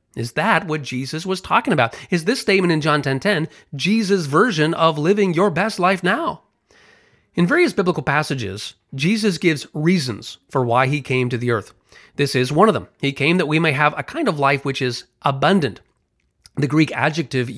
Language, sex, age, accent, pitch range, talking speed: English, male, 30-49, American, 130-175 Hz, 195 wpm